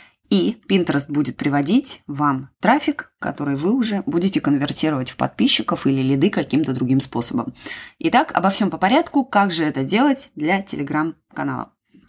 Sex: female